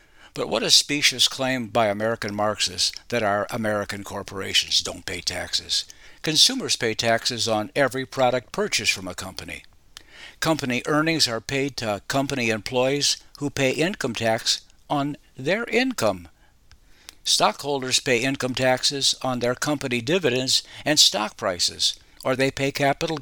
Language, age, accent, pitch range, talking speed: English, 60-79, American, 105-140 Hz, 140 wpm